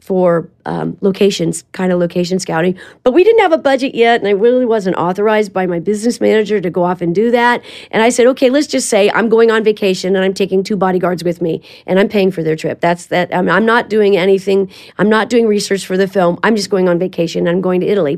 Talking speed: 250 wpm